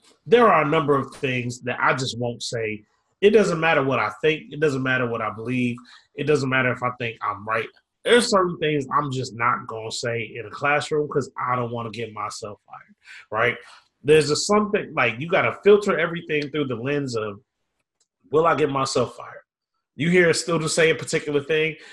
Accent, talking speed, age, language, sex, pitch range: American, 215 wpm, 30-49, English, male, 130-170 Hz